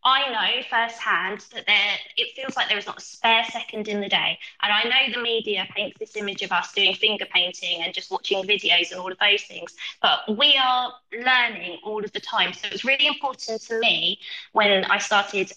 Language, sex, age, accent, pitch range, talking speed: English, female, 20-39, British, 205-265 Hz, 220 wpm